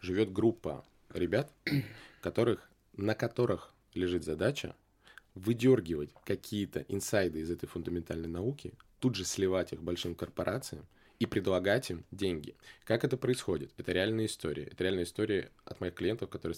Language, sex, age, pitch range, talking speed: Russian, male, 20-39, 85-120 Hz, 135 wpm